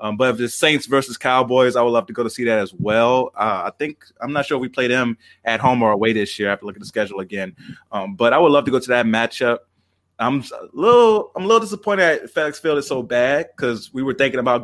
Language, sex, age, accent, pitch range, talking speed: English, male, 20-39, American, 110-130 Hz, 275 wpm